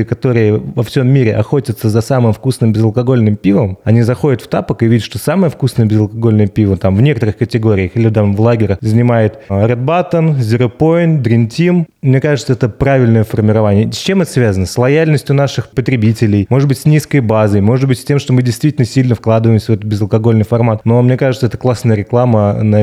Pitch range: 115-140 Hz